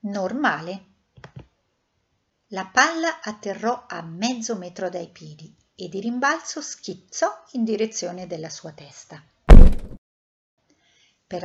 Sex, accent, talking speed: female, native, 100 wpm